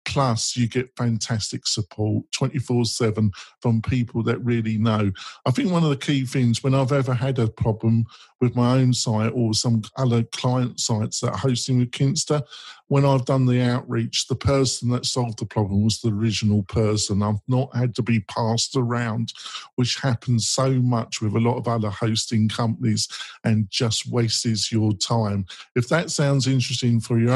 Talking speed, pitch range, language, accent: 180 wpm, 110-130 Hz, English, British